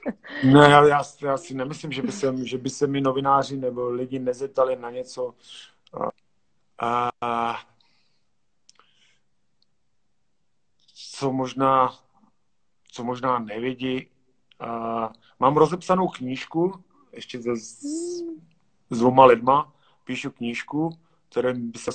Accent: native